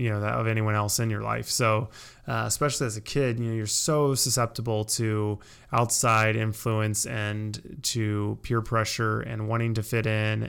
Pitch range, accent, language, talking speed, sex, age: 110-125 Hz, American, English, 175 wpm, male, 20-39